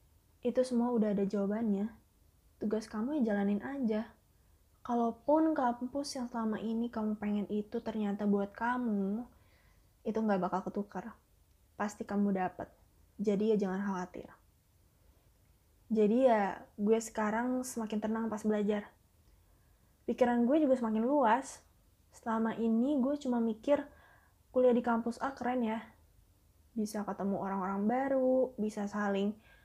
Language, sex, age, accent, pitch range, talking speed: Indonesian, female, 20-39, native, 205-245 Hz, 125 wpm